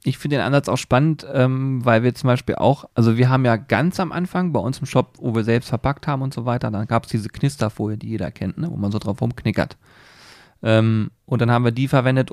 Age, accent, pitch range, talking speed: 30-49, German, 115-140 Hz, 255 wpm